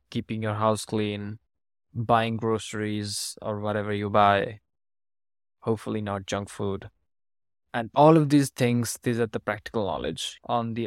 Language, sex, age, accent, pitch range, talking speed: English, male, 20-39, Indian, 105-120 Hz, 145 wpm